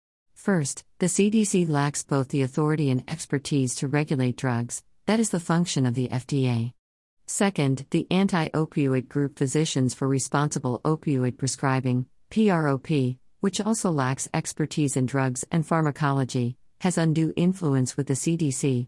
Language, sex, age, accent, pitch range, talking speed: English, female, 50-69, American, 130-165 Hz, 135 wpm